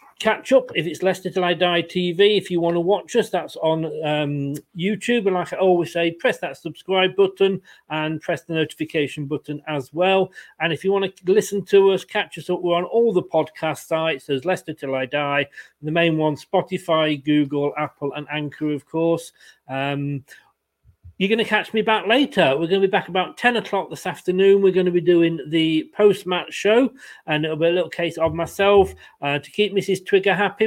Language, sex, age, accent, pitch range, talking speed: English, male, 40-59, British, 155-195 Hz, 210 wpm